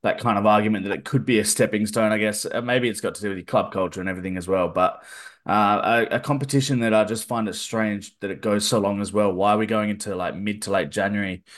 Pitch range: 100-115 Hz